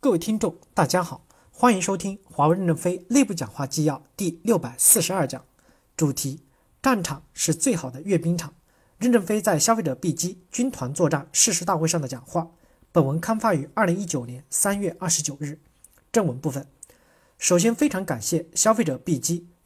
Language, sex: Chinese, male